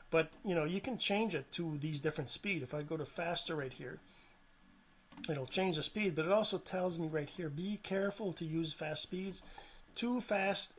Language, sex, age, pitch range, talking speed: English, male, 40-59, 155-195 Hz, 205 wpm